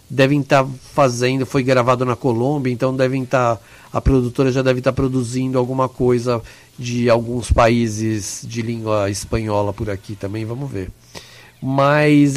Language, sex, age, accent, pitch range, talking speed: Portuguese, male, 50-69, Brazilian, 120-140 Hz, 160 wpm